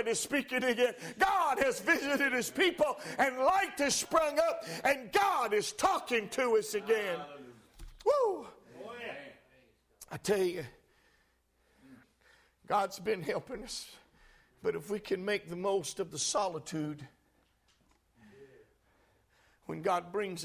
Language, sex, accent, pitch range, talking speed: English, male, American, 180-250 Hz, 120 wpm